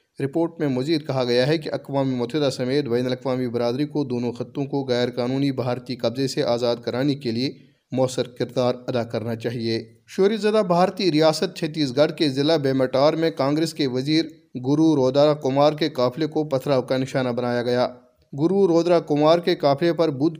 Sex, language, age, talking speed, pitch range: male, Urdu, 30-49, 180 wpm, 125-150 Hz